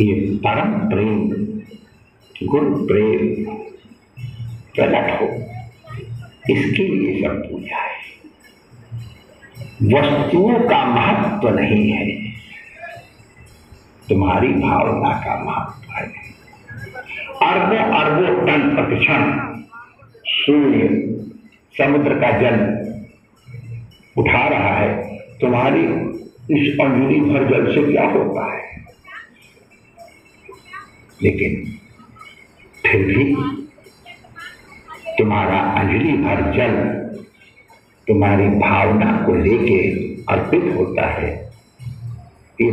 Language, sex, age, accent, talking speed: Hindi, male, 60-79, native, 80 wpm